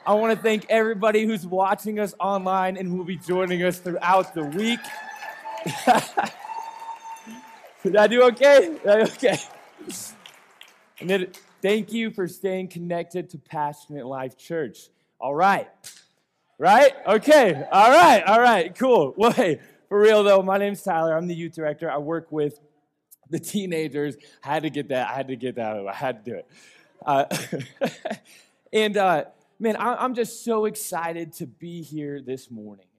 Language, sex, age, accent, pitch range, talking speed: English, male, 20-39, American, 145-205 Hz, 160 wpm